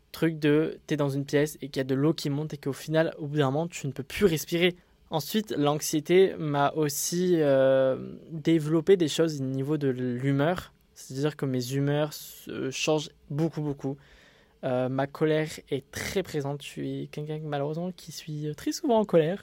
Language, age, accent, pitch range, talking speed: French, 20-39, French, 135-165 Hz, 195 wpm